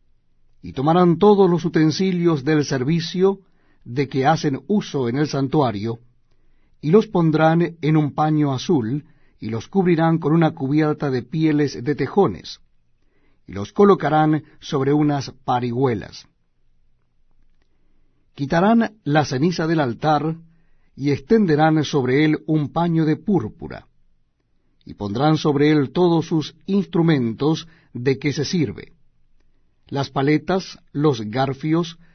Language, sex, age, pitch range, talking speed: Spanish, male, 60-79, 130-165 Hz, 120 wpm